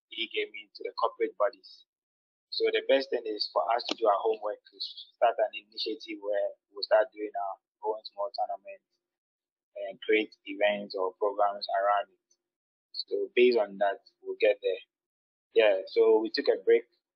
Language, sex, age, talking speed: English, male, 20-39, 170 wpm